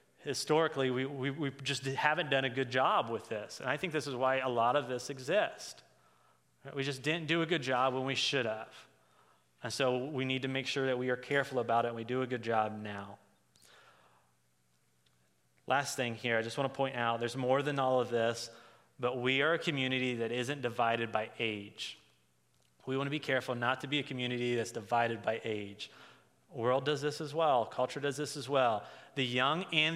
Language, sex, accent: English, male, American